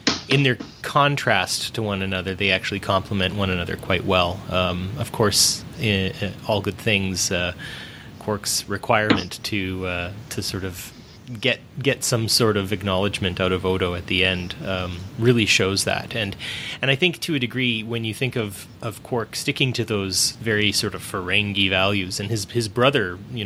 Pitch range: 95-125 Hz